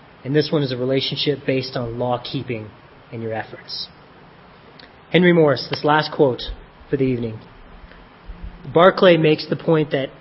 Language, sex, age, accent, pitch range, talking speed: English, male, 30-49, American, 125-165 Hz, 145 wpm